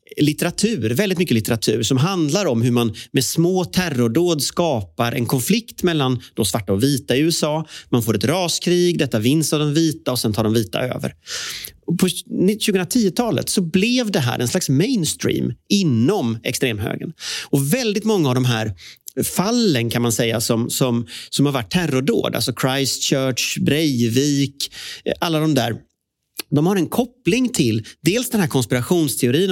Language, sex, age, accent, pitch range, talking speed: Swedish, male, 30-49, native, 115-175 Hz, 165 wpm